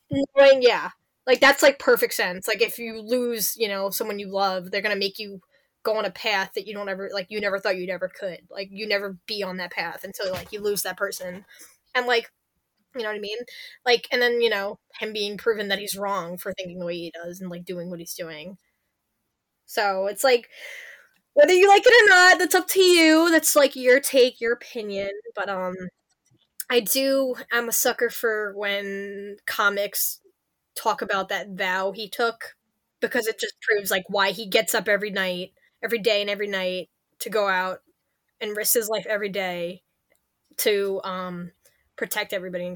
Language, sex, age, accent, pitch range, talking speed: English, female, 10-29, American, 195-250 Hz, 200 wpm